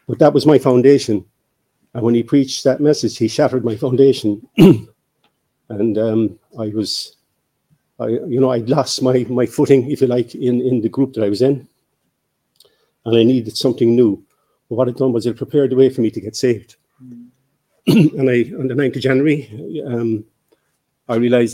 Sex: male